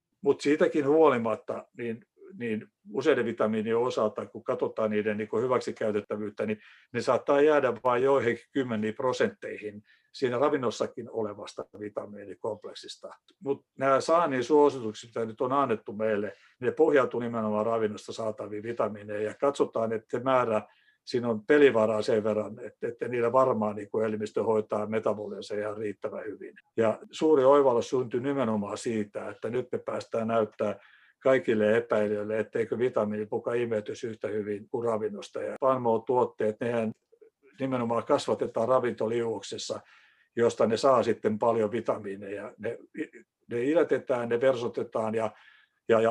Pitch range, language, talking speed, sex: 110-160 Hz, Finnish, 125 wpm, male